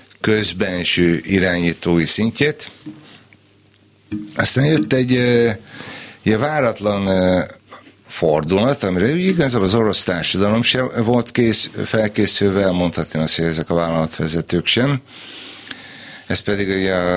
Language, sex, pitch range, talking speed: Hungarian, male, 80-105 Hz, 95 wpm